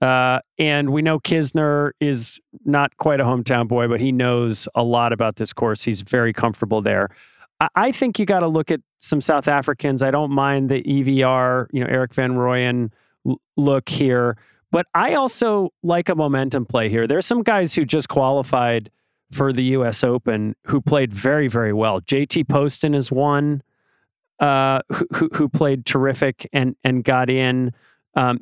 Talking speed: 180 wpm